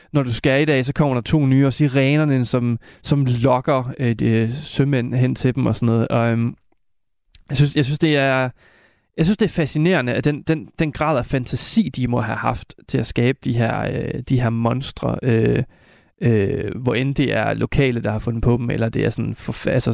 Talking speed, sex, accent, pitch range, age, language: 220 wpm, male, native, 120-145 Hz, 20-39, Danish